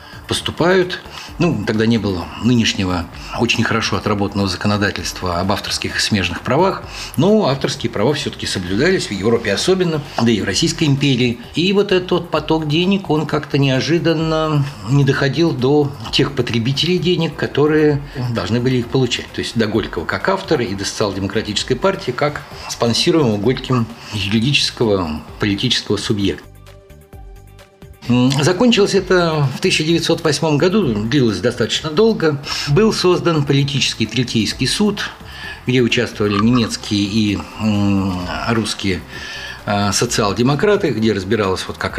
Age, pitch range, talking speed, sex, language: 50-69, 110-155 Hz, 120 wpm, male, Russian